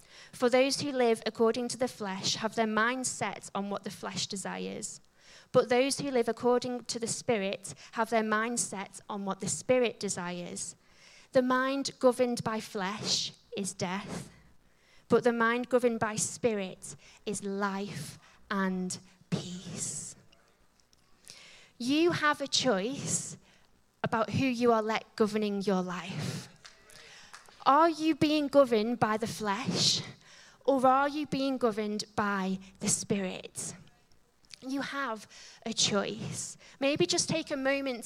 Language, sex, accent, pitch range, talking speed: English, female, British, 195-250 Hz, 135 wpm